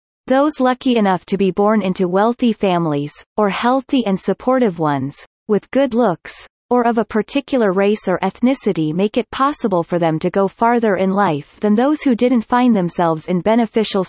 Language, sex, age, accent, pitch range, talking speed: English, female, 30-49, American, 180-245 Hz, 180 wpm